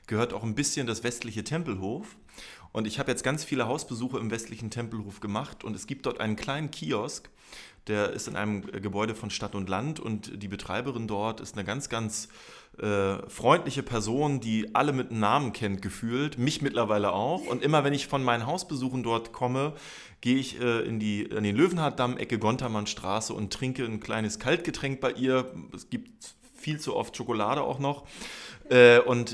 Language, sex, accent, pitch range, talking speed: German, male, German, 105-130 Hz, 180 wpm